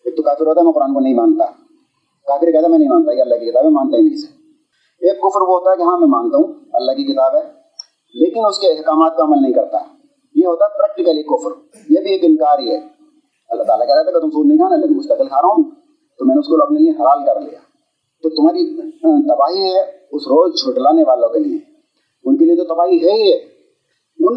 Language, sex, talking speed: Urdu, male, 245 wpm